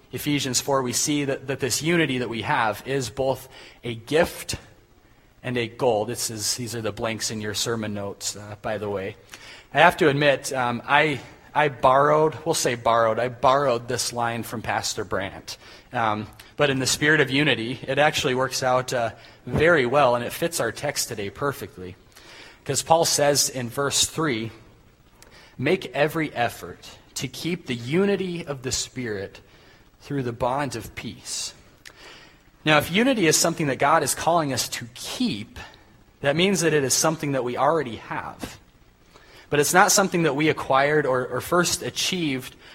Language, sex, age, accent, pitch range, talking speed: English, male, 30-49, American, 115-145 Hz, 175 wpm